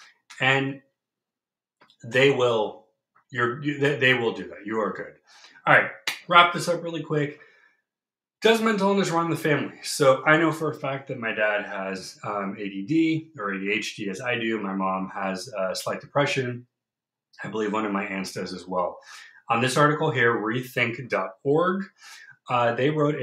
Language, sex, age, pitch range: English, male, 30-49, 110-150 Hz